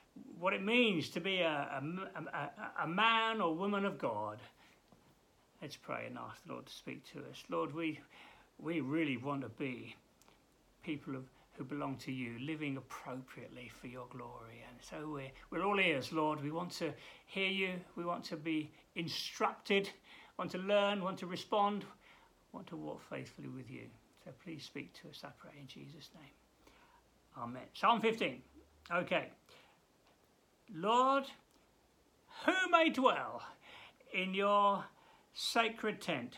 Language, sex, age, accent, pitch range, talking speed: English, male, 60-79, British, 145-205 Hz, 160 wpm